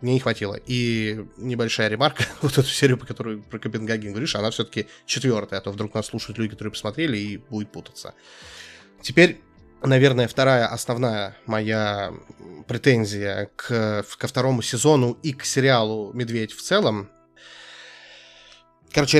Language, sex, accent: Russian, male, native